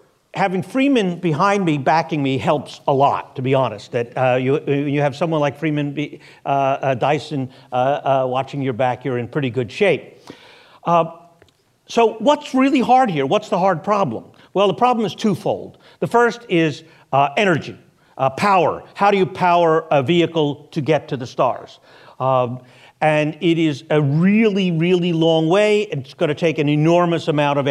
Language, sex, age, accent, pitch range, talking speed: English, male, 50-69, American, 140-180 Hz, 185 wpm